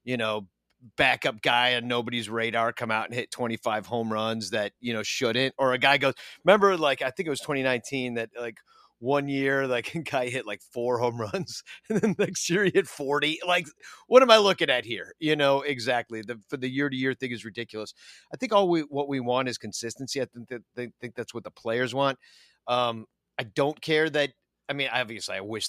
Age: 40-59